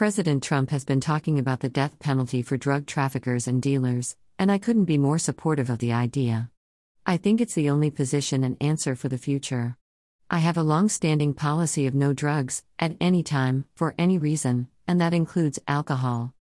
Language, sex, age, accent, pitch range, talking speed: English, female, 50-69, American, 130-160 Hz, 190 wpm